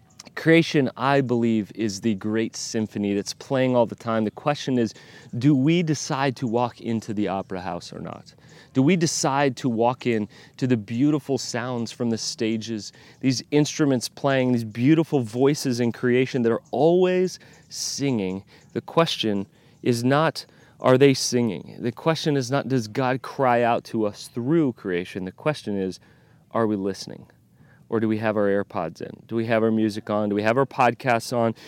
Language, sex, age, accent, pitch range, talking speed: English, male, 30-49, American, 110-145 Hz, 180 wpm